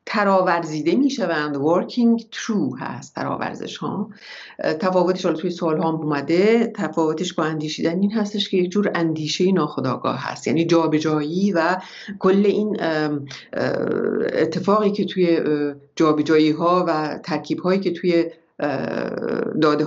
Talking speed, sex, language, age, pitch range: 130 wpm, female, English, 50-69, 155-190 Hz